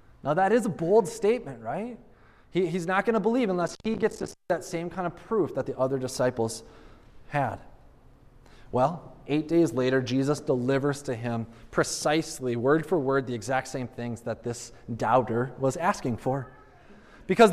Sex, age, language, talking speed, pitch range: male, 20-39, English, 175 wpm, 145-210 Hz